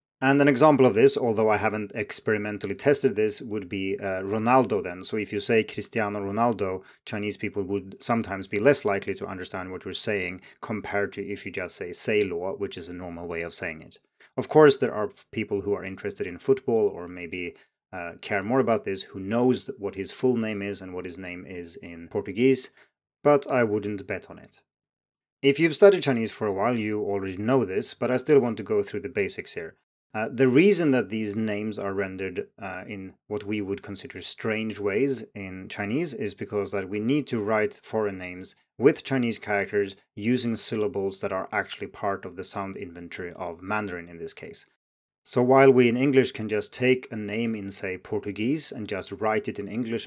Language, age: Chinese, 30-49